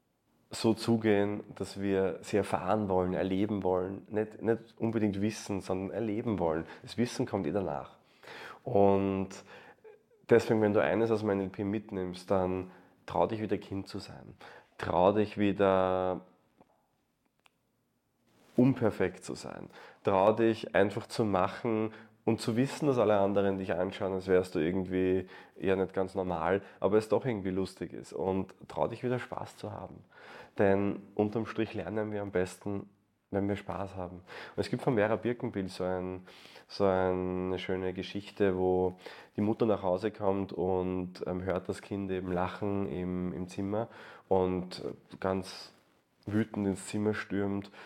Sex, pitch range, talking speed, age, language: male, 95-110 Hz, 150 wpm, 30-49, German